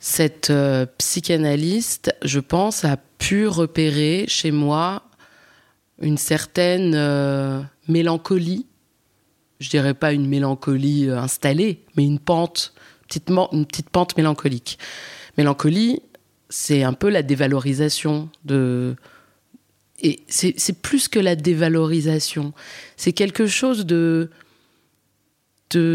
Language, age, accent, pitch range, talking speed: French, 20-39, French, 140-170 Hz, 110 wpm